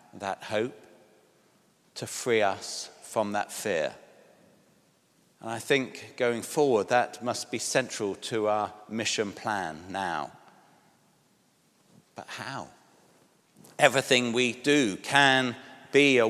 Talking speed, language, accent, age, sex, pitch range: 110 wpm, English, British, 50-69, male, 120-135 Hz